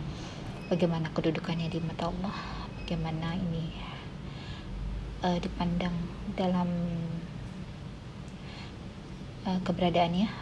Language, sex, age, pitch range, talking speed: Indonesian, female, 20-39, 165-185 Hz, 70 wpm